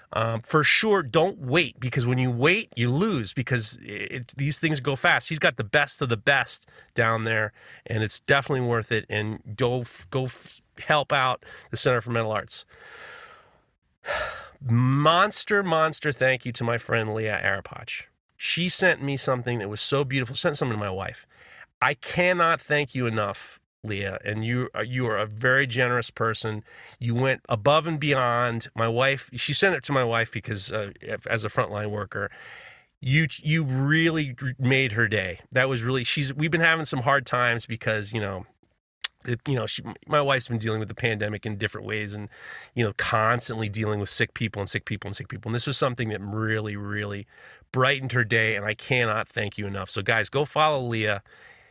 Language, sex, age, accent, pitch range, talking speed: English, male, 30-49, American, 110-140 Hz, 185 wpm